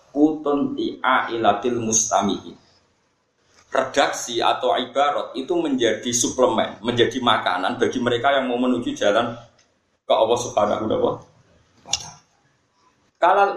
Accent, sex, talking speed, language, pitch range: native, male, 95 wpm, Indonesian, 125-165 Hz